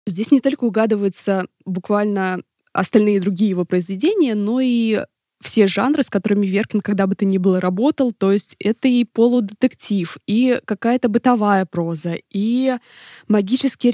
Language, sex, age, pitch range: Russian, female, 20-39, 195-230 Hz